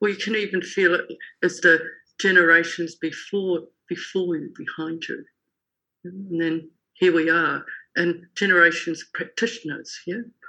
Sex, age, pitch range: female, 50-69, 160-195 Hz